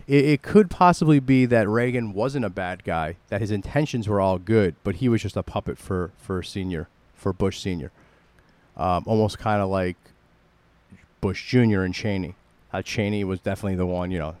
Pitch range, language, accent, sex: 95-120 Hz, English, American, male